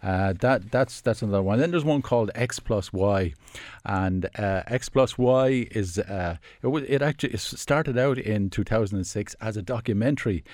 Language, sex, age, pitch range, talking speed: English, male, 50-69, 90-110 Hz, 170 wpm